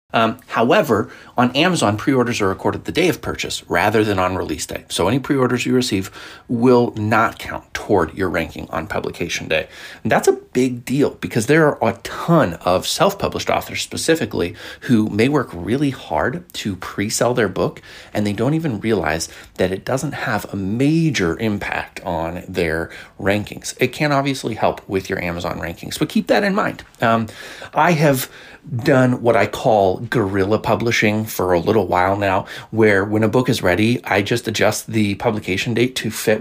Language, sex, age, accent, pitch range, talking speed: English, male, 30-49, American, 100-130 Hz, 180 wpm